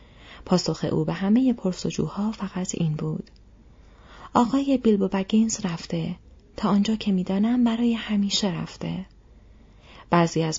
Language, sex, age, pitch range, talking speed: Persian, female, 30-49, 170-220 Hz, 125 wpm